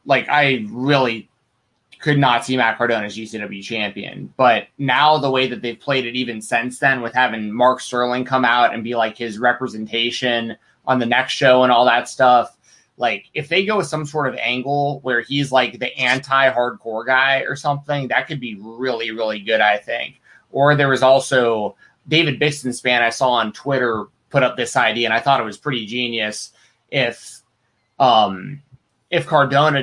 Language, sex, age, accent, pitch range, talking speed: English, male, 20-39, American, 125-150 Hz, 185 wpm